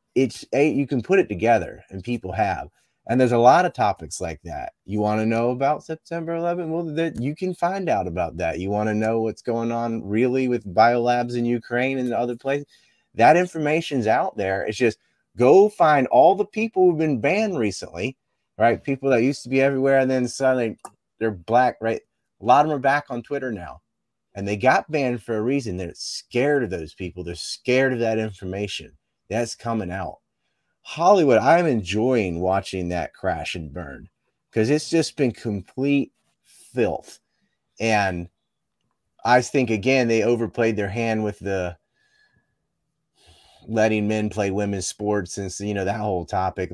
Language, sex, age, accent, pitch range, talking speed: English, male, 30-49, American, 100-140 Hz, 175 wpm